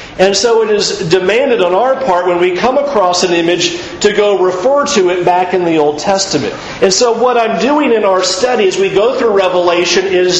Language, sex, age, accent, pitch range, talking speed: English, male, 40-59, American, 170-225 Hz, 220 wpm